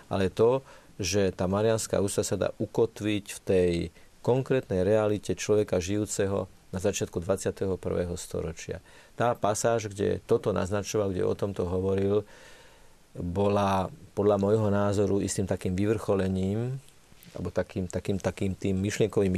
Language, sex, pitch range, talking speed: Slovak, male, 95-105 Hz, 125 wpm